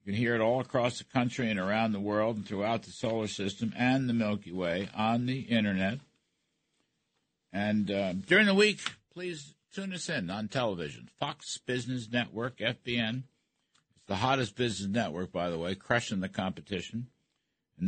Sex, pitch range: male, 100-135 Hz